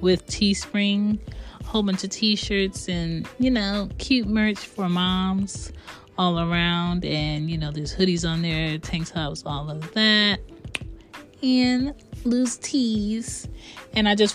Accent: American